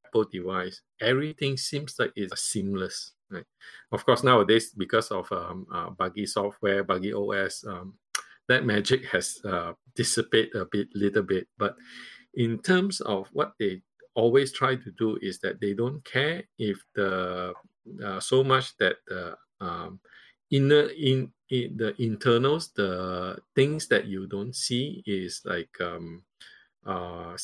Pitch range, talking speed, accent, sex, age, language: 100-135 Hz, 145 wpm, Malaysian, male, 50-69, English